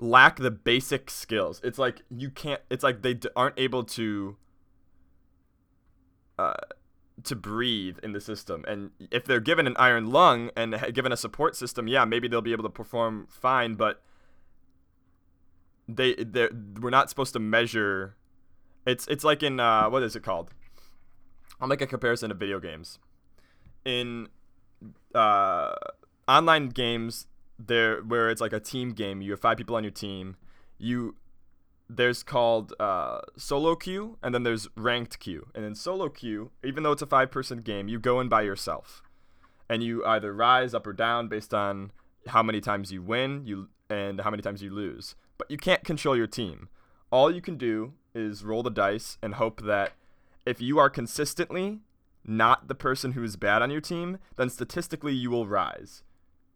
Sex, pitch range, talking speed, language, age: male, 100-125 Hz, 175 wpm, English, 20-39